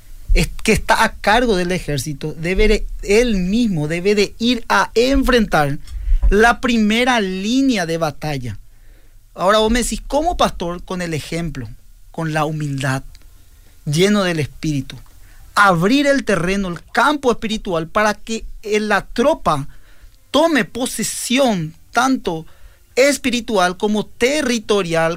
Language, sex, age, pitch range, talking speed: Spanish, male, 40-59, 155-225 Hz, 120 wpm